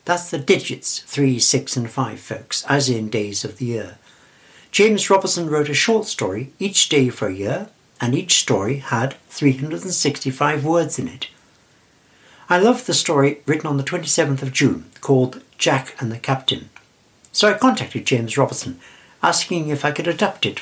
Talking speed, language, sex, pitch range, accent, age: 170 wpm, English, male, 130-175 Hz, British, 60-79